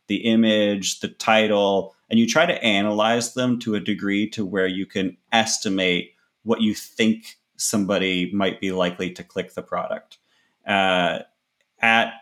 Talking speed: 150 wpm